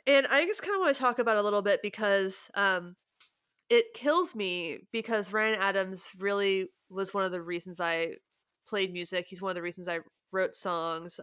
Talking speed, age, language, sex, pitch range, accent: 205 wpm, 20-39, English, female, 175-225 Hz, American